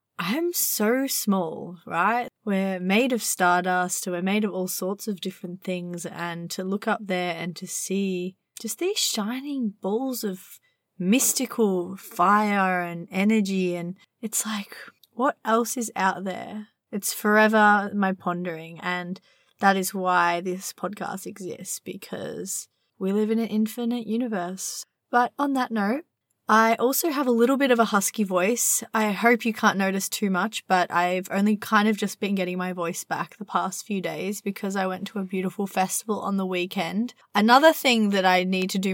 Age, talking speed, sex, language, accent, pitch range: 20-39, 175 wpm, female, English, Australian, 185-225 Hz